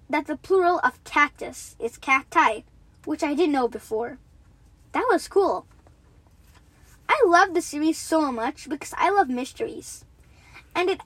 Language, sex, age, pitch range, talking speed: English, female, 10-29, 255-360 Hz, 145 wpm